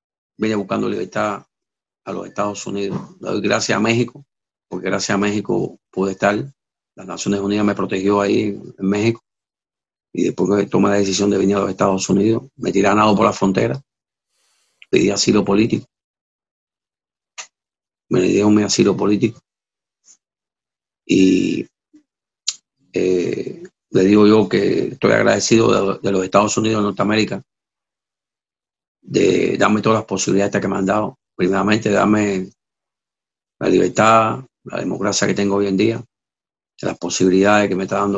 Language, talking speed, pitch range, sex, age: Spanish, 145 wpm, 95-105 Hz, male, 50-69